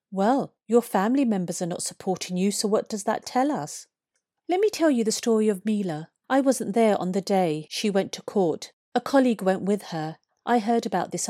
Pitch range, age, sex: 190-245 Hz, 40-59, female